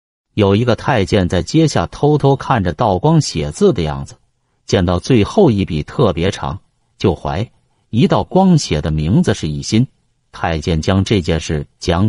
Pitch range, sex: 85-125 Hz, male